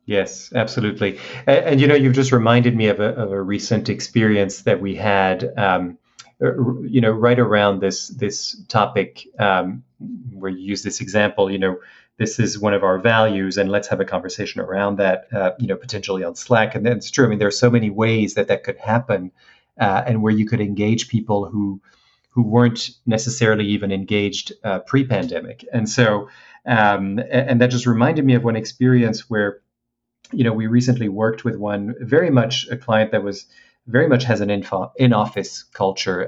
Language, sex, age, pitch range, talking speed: English, male, 40-59, 100-125 Hz, 195 wpm